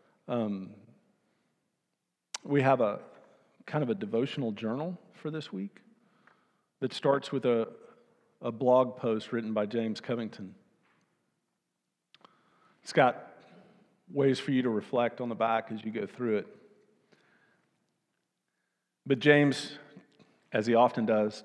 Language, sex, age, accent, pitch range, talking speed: English, male, 50-69, American, 110-150 Hz, 125 wpm